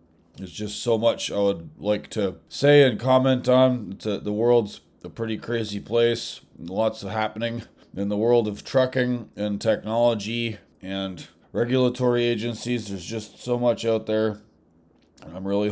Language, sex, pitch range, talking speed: English, male, 100-125 Hz, 150 wpm